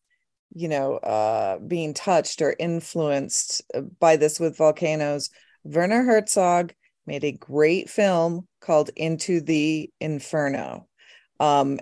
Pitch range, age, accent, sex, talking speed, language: 150-185 Hz, 30-49, American, female, 110 wpm, English